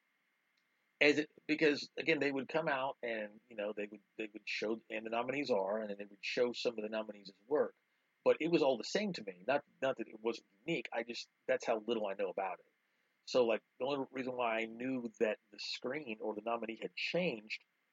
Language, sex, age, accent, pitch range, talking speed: English, male, 40-59, American, 110-155 Hz, 230 wpm